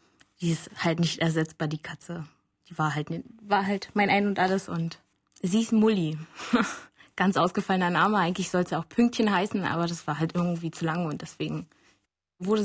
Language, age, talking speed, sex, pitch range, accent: German, 20-39, 190 wpm, female, 170-225 Hz, German